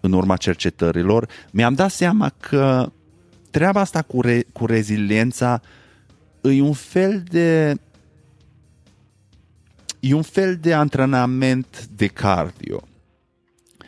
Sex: male